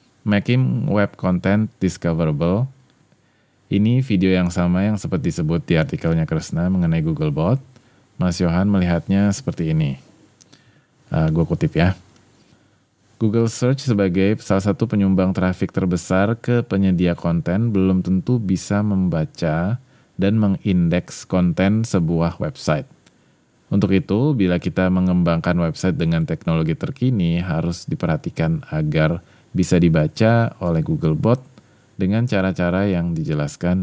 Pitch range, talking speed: 90-120 Hz, 115 wpm